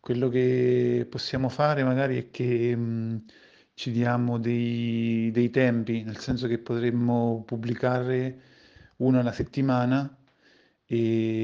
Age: 40-59